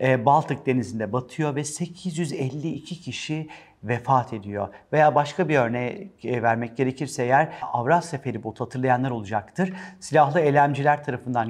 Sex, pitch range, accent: male, 125-160 Hz, native